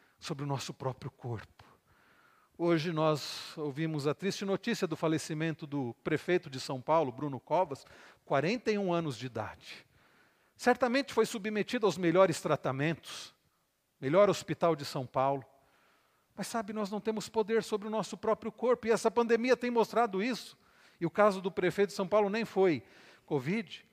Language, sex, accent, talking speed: Portuguese, male, Brazilian, 160 wpm